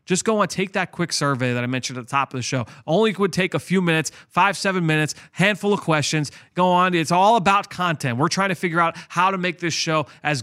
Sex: male